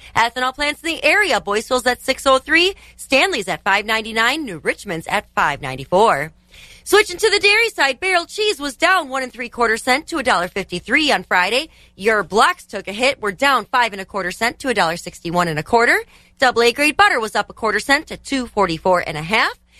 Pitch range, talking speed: 205-310 Hz, 205 wpm